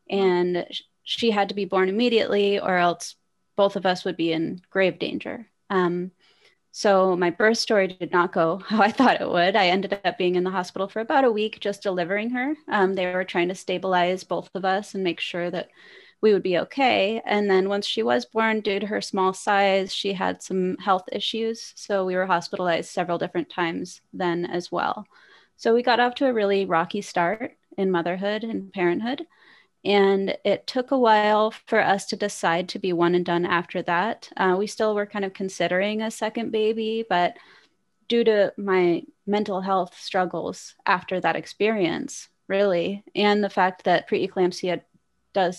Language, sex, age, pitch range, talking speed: English, female, 20-39, 180-215 Hz, 190 wpm